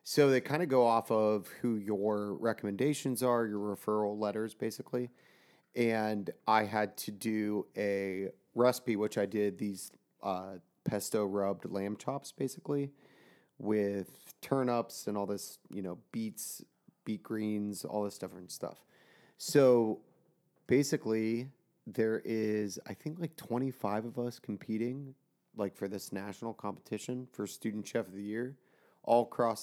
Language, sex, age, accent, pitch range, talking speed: English, male, 30-49, American, 100-120 Hz, 140 wpm